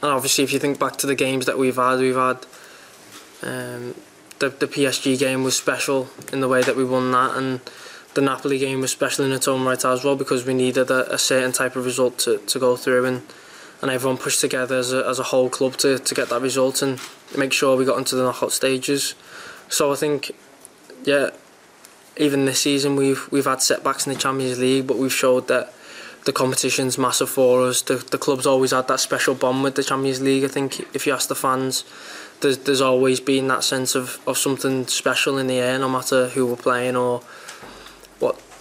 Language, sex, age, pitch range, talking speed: English, male, 20-39, 125-135 Hz, 220 wpm